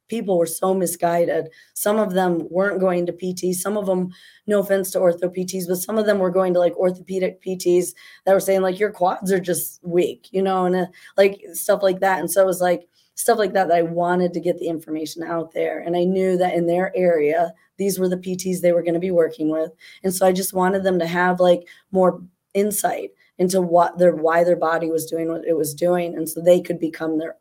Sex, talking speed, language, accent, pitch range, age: female, 240 wpm, English, American, 170-190 Hz, 20-39